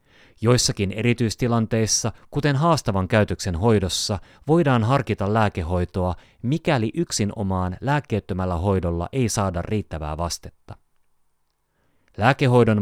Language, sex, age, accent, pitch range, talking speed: Finnish, male, 30-49, native, 95-120 Hz, 85 wpm